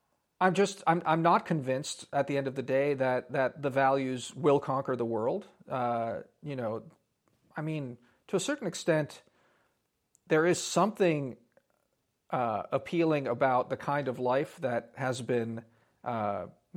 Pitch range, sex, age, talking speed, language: 125-155 Hz, male, 40-59, 150 wpm, English